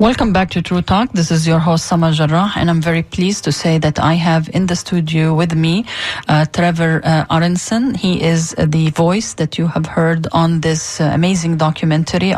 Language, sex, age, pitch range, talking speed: English, female, 30-49, 155-190 Hz, 210 wpm